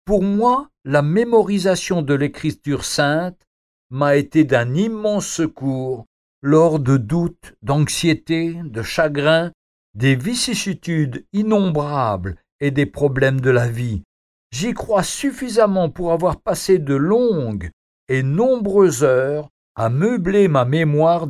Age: 60-79